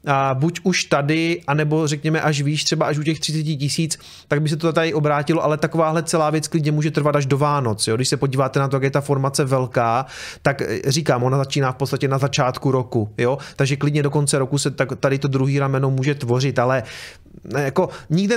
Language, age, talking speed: Czech, 30-49, 220 wpm